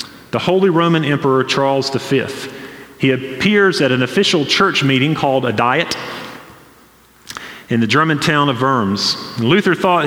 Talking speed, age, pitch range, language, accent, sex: 150 wpm, 40-59, 130-170 Hz, English, American, male